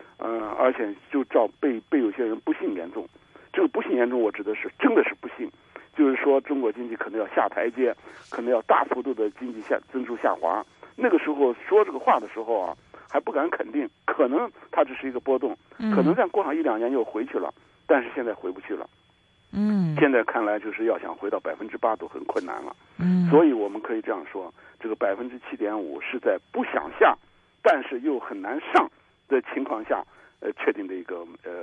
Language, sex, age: Chinese, male, 60-79